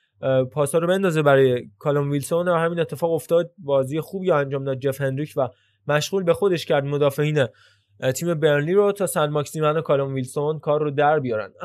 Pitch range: 140-170 Hz